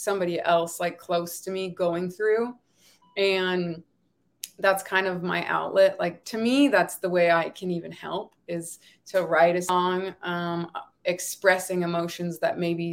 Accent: American